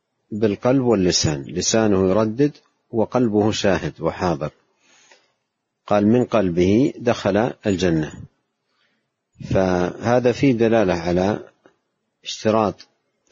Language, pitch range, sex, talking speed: Arabic, 95-115 Hz, male, 75 wpm